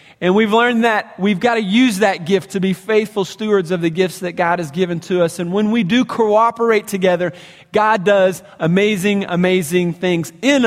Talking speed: 195 wpm